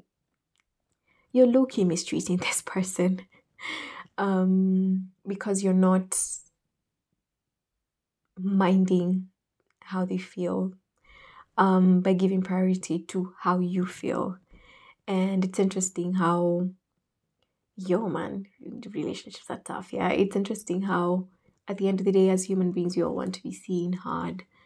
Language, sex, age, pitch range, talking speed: English, female, 20-39, 180-195 Hz, 120 wpm